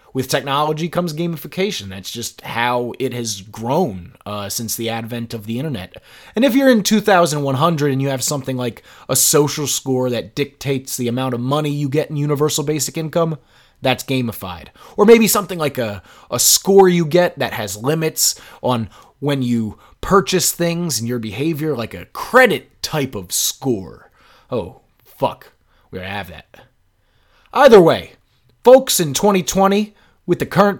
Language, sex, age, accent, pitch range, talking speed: English, male, 20-39, American, 120-180 Hz, 160 wpm